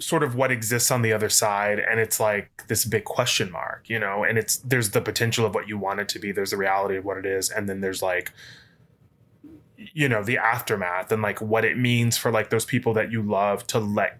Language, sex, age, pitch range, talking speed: English, male, 20-39, 105-125 Hz, 245 wpm